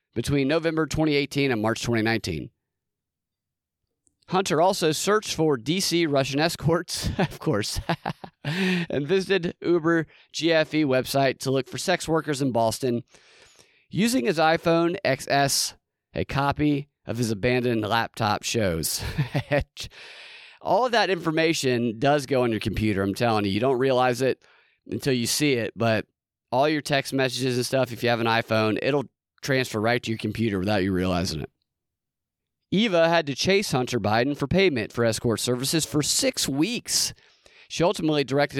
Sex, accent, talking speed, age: male, American, 150 wpm, 30-49